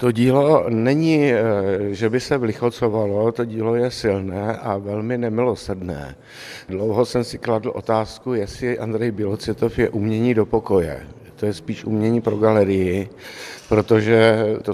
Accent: native